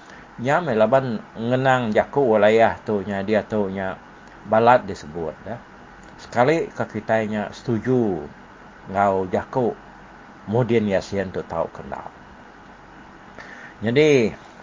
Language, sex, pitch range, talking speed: English, male, 105-140 Hz, 90 wpm